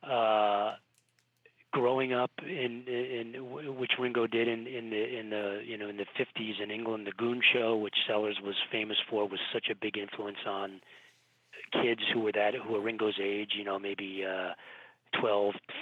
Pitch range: 100-115 Hz